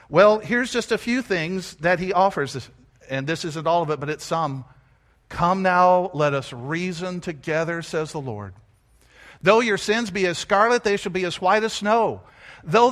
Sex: male